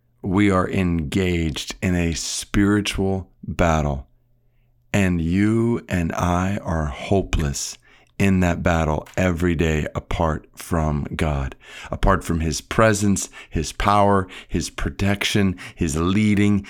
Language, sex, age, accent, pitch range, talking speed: English, male, 50-69, American, 90-110 Hz, 110 wpm